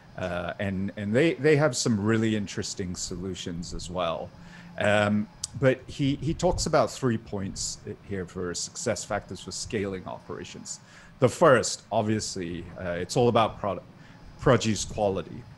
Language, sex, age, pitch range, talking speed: English, male, 40-59, 95-125 Hz, 145 wpm